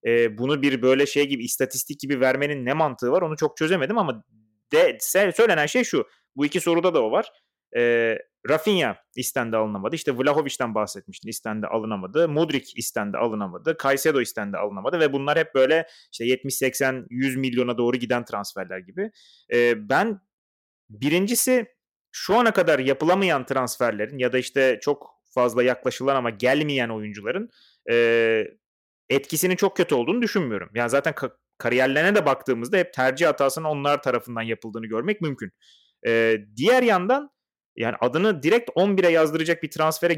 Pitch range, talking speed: 120-155 Hz, 155 wpm